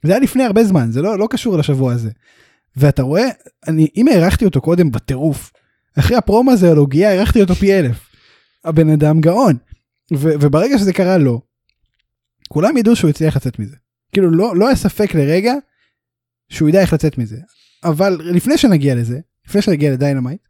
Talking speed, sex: 175 wpm, male